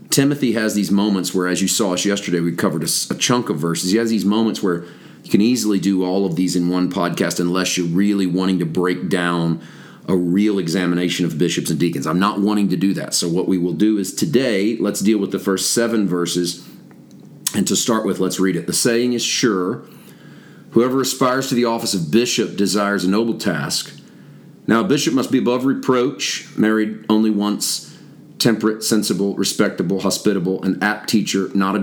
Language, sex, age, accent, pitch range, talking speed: English, male, 40-59, American, 90-110 Hz, 200 wpm